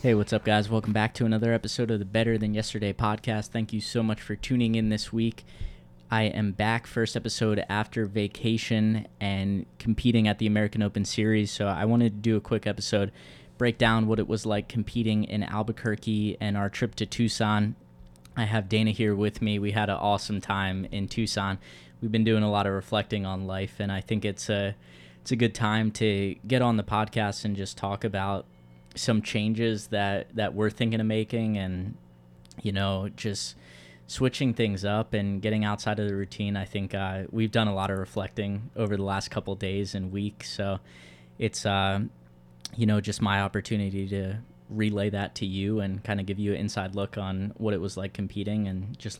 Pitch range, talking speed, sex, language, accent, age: 100-110 Hz, 200 wpm, male, English, American, 20-39